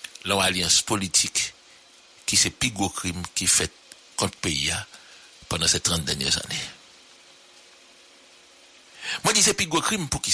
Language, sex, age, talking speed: English, male, 60-79, 135 wpm